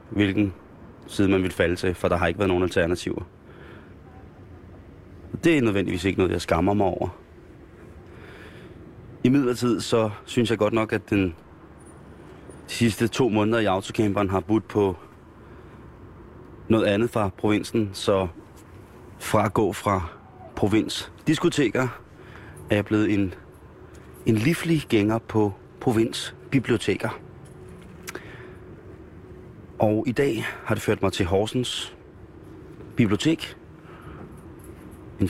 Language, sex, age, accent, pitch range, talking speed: Danish, male, 30-49, native, 90-110 Hz, 115 wpm